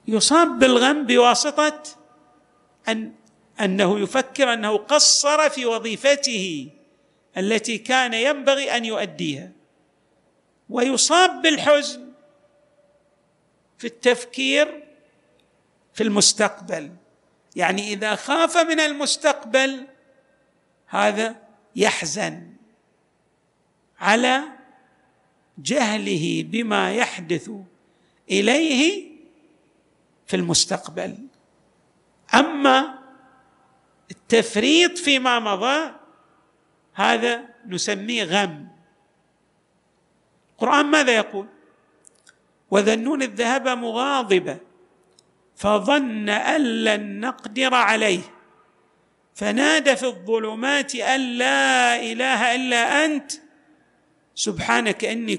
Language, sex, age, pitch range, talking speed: Arabic, male, 50-69, 210-280 Hz, 70 wpm